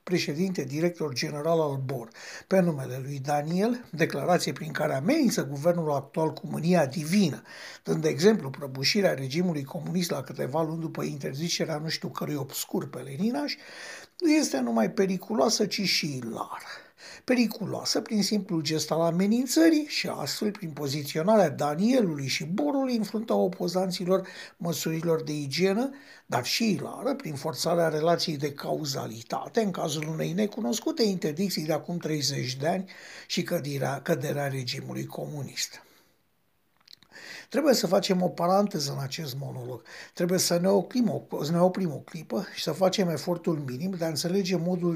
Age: 60-79